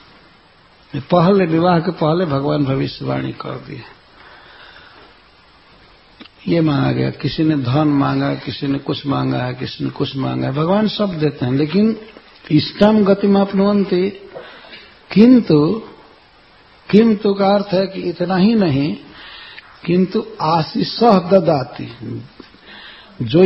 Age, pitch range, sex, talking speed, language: 60-79, 150-210 Hz, male, 105 wpm, English